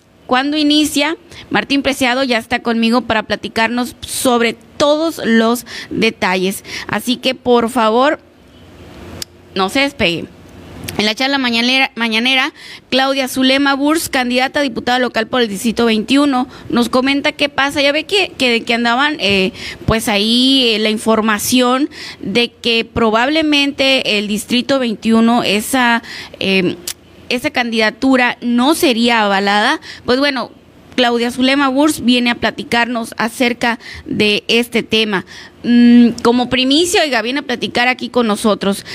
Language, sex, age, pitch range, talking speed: Spanish, female, 20-39, 225-275 Hz, 135 wpm